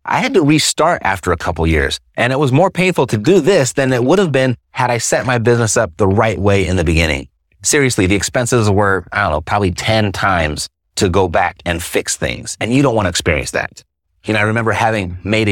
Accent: American